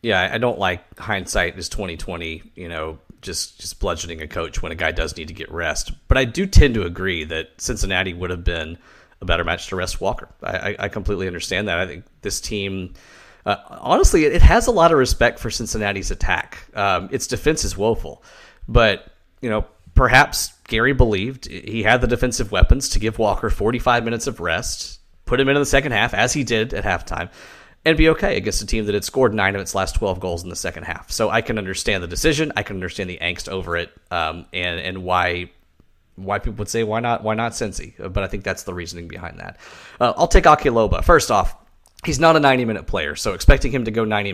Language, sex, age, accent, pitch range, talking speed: English, male, 30-49, American, 85-110 Hz, 225 wpm